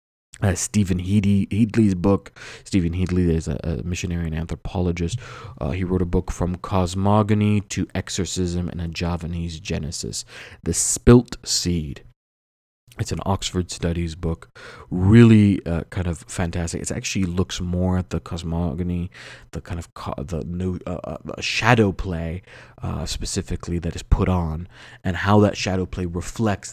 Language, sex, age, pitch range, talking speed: English, male, 30-49, 85-105 Hz, 150 wpm